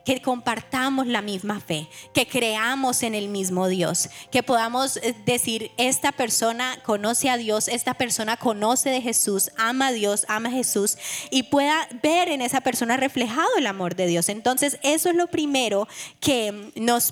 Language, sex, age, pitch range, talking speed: Spanish, female, 20-39, 205-275 Hz, 170 wpm